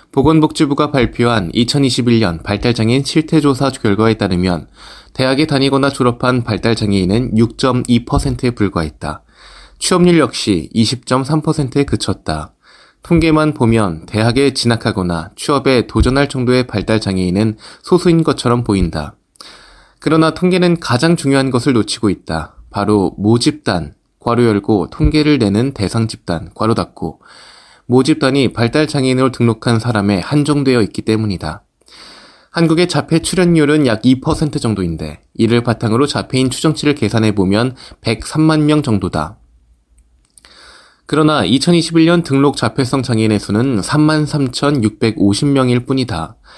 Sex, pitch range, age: male, 105-140 Hz, 20-39